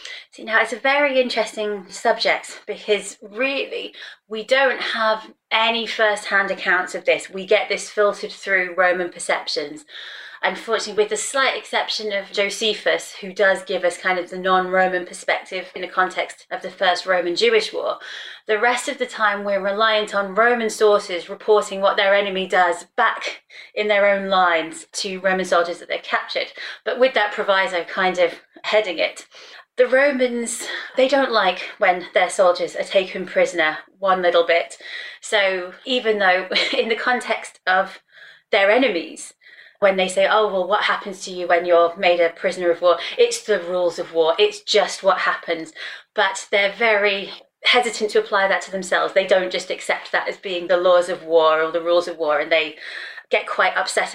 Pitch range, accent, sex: 180-220 Hz, British, female